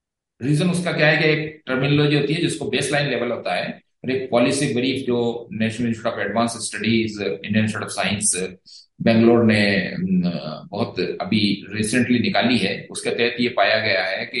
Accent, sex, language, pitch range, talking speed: native, male, Hindi, 115-150 Hz, 65 wpm